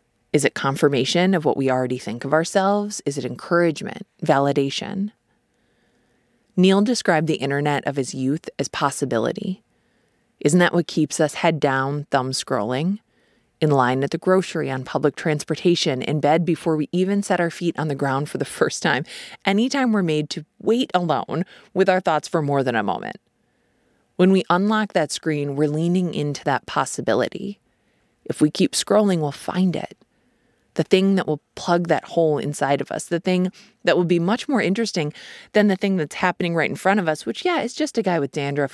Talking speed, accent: 190 wpm, American